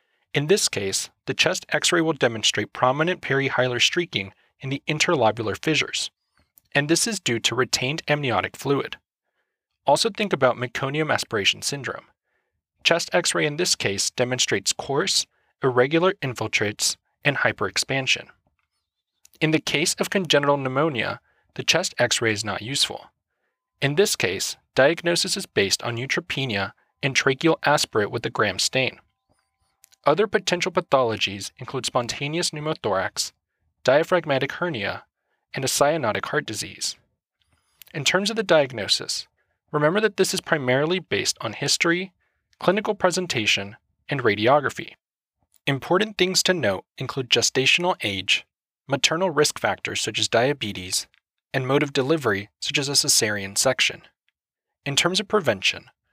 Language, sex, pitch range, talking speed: English, male, 125-175 Hz, 130 wpm